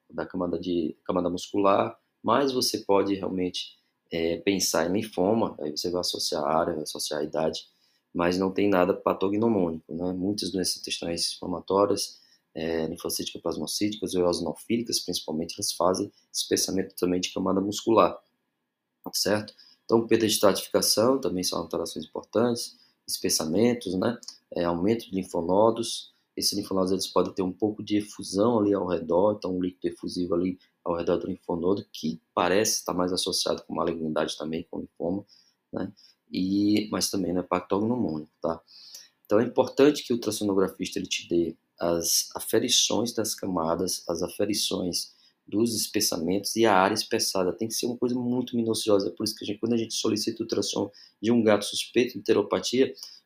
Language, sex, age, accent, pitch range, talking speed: Portuguese, male, 20-39, Brazilian, 90-105 Hz, 160 wpm